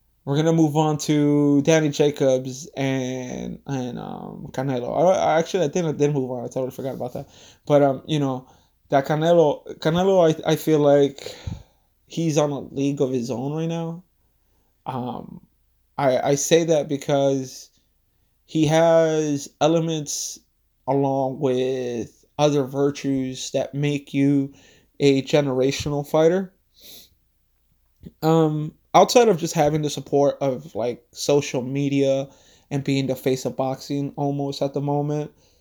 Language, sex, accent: English, male, American